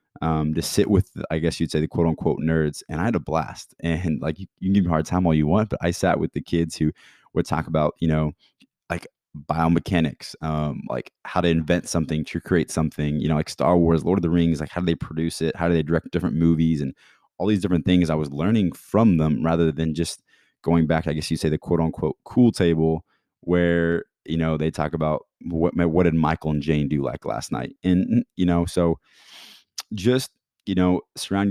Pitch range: 80-90 Hz